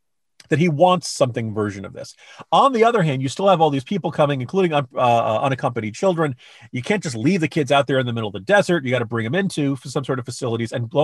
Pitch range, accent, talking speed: 125-185 Hz, American, 270 wpm